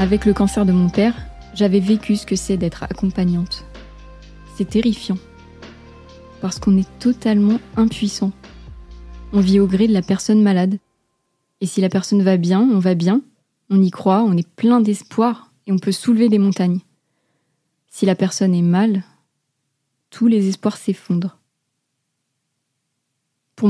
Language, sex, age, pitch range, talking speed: French, female, 20-39, 155-200 Hz, 150 wpm